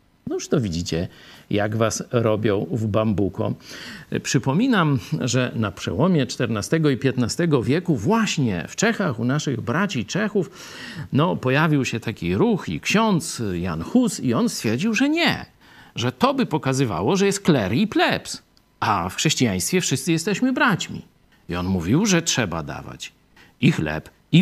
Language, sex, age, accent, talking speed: Polish, male, 50-69, native, 150 wpm